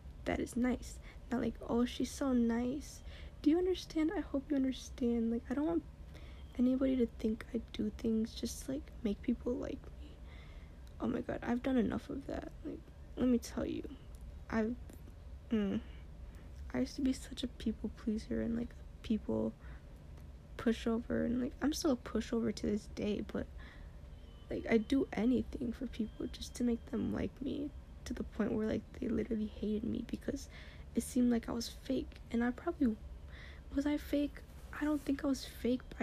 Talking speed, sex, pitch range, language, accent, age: 185 wpm, female, 210-260 Hz, English, American, 10-29